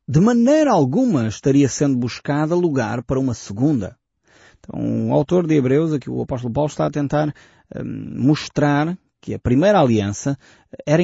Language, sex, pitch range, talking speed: Portuguese, male, 120-160 Hz, 165 wpm